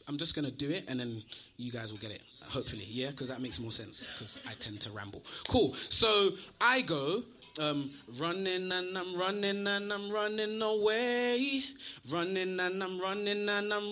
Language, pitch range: English, 150-245 Hz